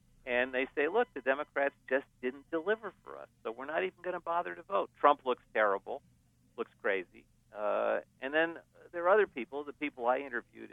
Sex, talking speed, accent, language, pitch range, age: male, 200 wpm, American, English, 105-130 Hz, 50-69